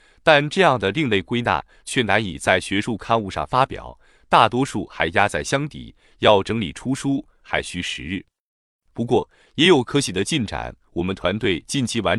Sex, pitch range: male, 95-145 Hz